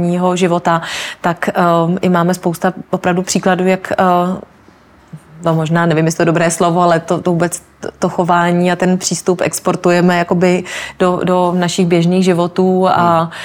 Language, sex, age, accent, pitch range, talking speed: Czech, female, 30-49, native, 160-180 Hz, 145 wpm